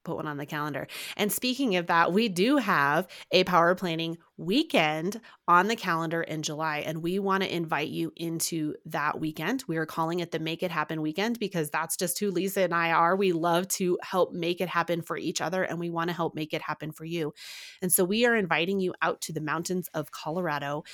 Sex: female